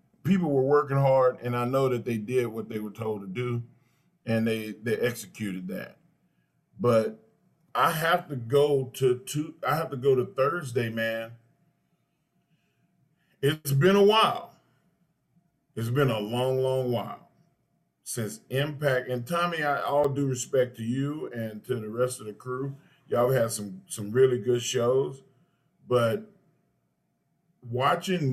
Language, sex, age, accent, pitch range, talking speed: English, male, 40-59, American, 120-150 Hz, 150 wpm